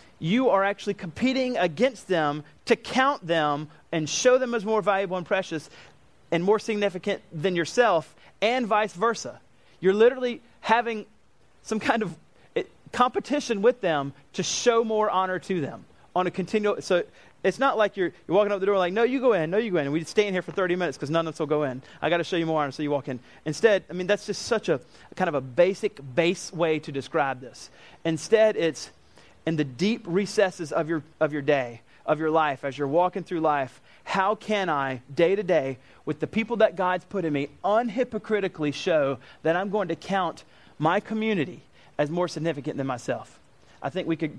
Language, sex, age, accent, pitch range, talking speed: English, male, 30-49, American, 150-200 Hz, 210 wpm